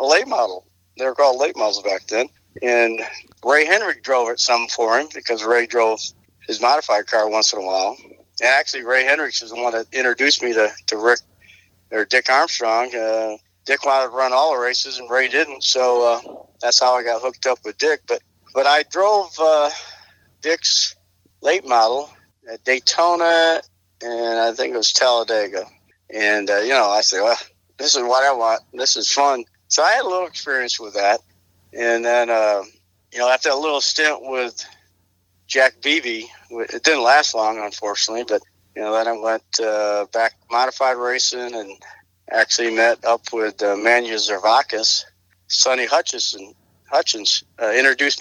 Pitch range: 105-130 Hz